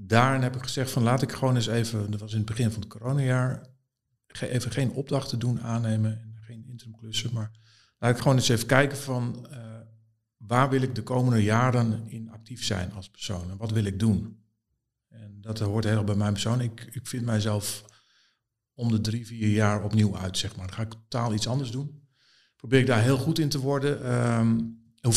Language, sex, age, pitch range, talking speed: Dutch, male, 50-69, 110-130 Hz, 210 wpm